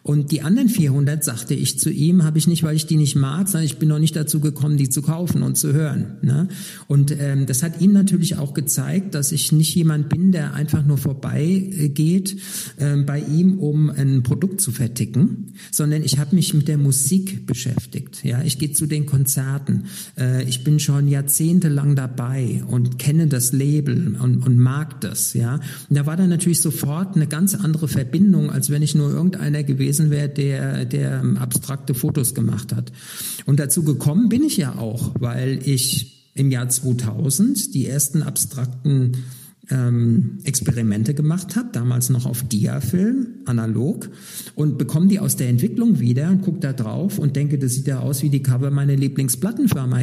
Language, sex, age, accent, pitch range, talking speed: German, male, 50-69, German, 130-165 Hz, 185 wpm